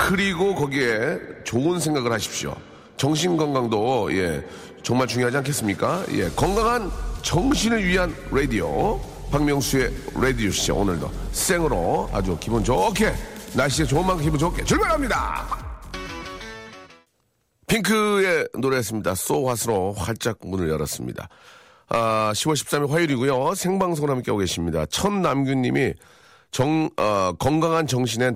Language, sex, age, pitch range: Korean, male, 40-59, 100-140 Hz